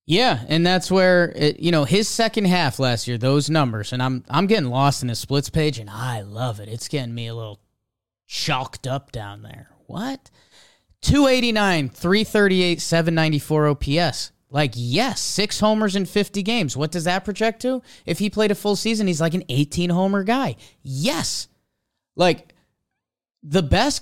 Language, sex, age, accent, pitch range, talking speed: English, male, 30-49, American, 130-200 Hz, 170 wpm